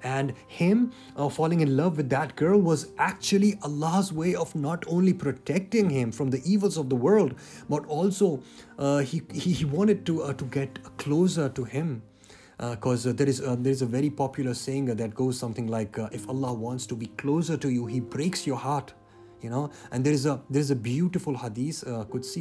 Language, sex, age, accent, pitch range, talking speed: English, male, 30-49, Indian, 115-145 Hz, 205 wpm